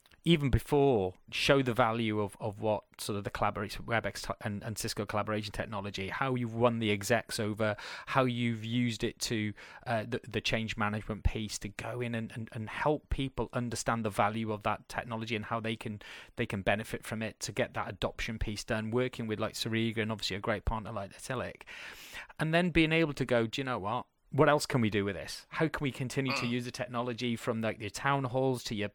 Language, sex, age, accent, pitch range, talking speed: English, male, 30-49, British, 110-130 Hz, 220 wpm